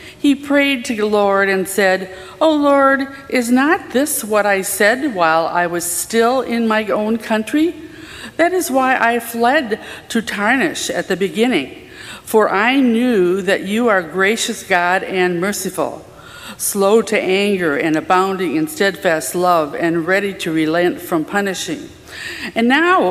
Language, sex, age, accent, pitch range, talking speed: English, female, 50-69, American, 185-250 Hz, 155 wpm